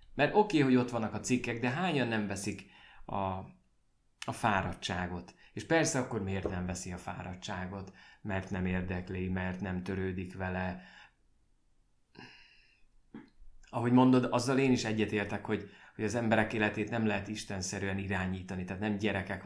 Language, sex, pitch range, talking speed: Hungarian, male, 95-115 Hz, 145 wpm